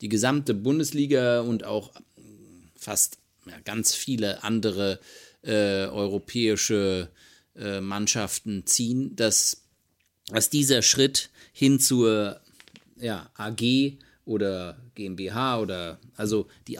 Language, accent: German, German